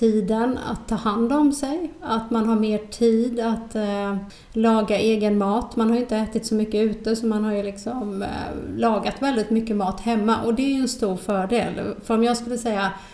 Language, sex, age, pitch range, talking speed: Swedish, female, 30-49, 205-235 Hz, 210 wpm